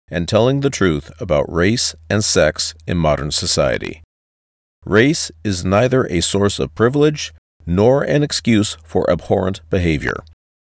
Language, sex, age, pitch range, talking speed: English, male, 50-69, 75-110 Hz, 135 wpm